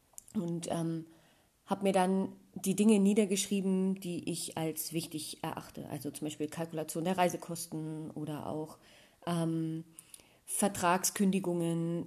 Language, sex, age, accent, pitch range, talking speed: German, female, 30-49, German, 165-200 Hz, 115 wpm